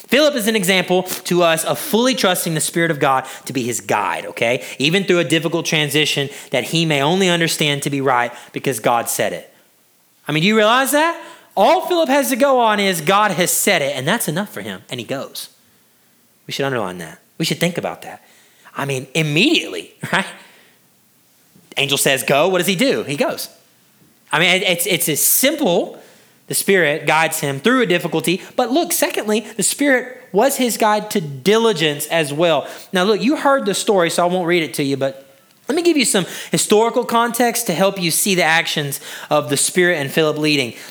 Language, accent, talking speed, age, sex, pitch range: English, American, 205 wpm, 30-49, male, 150-220 Hz